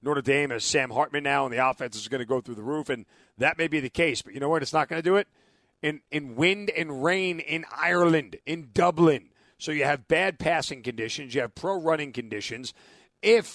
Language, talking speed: English, 230 wpm